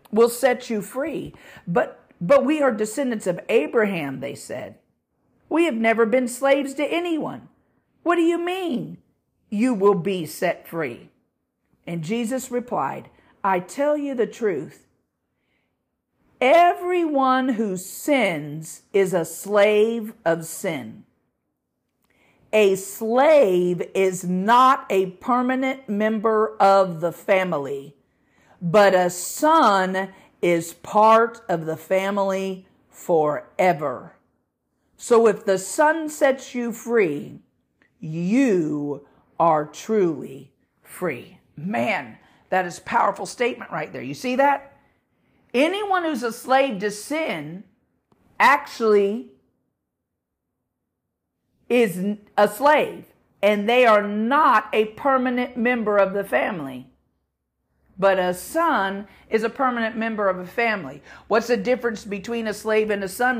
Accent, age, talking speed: American, 50-69, 120 wpm